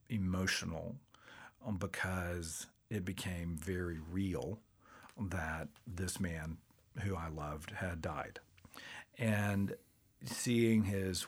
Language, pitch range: English, 95-110 Hz